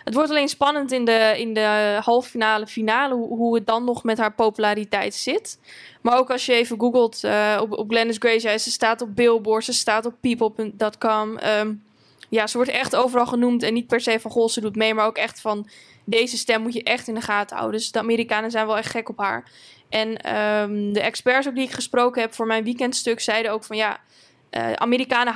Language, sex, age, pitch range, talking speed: Dutch, female, 10-29, 220-245 Hz, 225 wpm